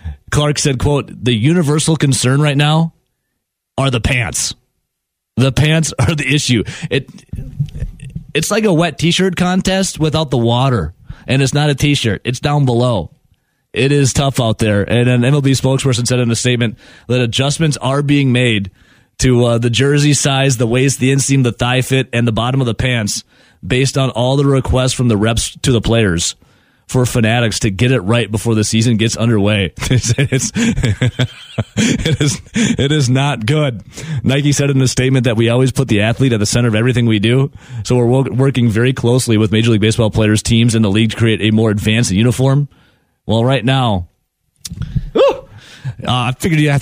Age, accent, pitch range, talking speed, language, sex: 30-49, American, 115-135 Hz, 190 wpm, English, male